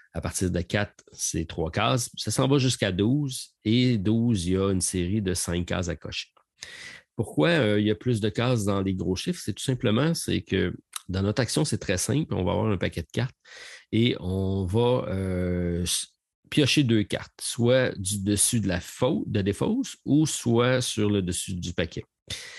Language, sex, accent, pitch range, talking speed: French, male, Canadian, 90-120 Hz, 200 wpm